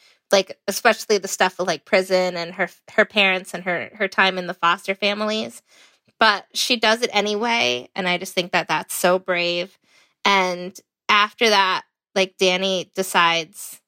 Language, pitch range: English, 180-220 Hz